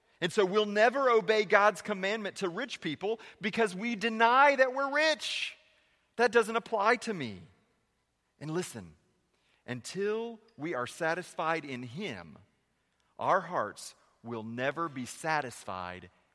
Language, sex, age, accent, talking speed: English, male, 40-59, American, 130 wpm